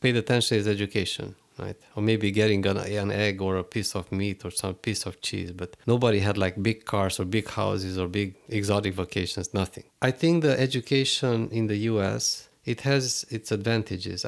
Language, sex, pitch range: English, male, 95-115 Hz